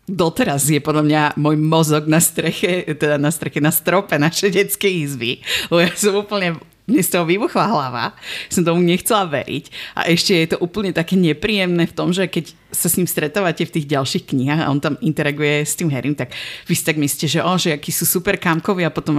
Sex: female